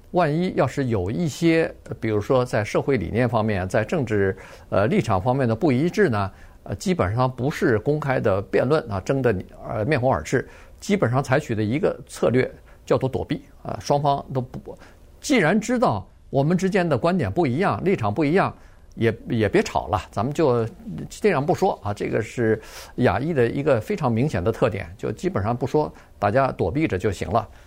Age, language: 50-69, Chinese